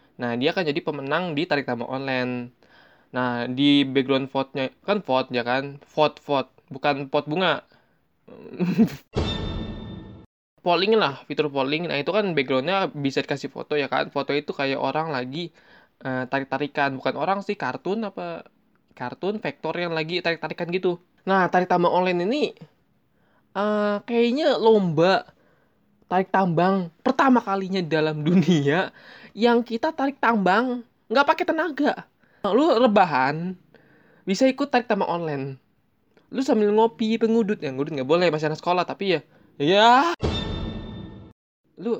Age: 20-39